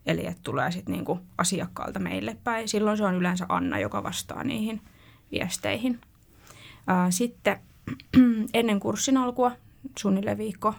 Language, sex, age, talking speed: Finnish, female, 20-39, 130 wpm